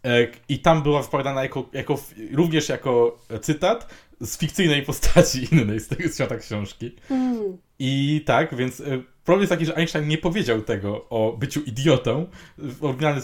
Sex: male